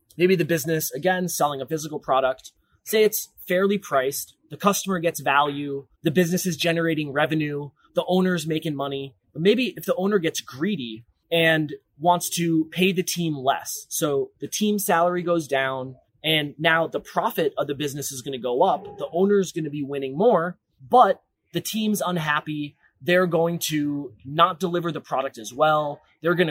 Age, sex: 20-39, male